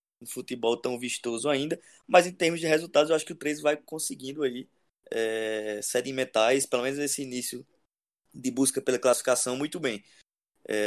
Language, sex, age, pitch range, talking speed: Portuguese, male, 20-39, 120-145 Hz, 175 wpm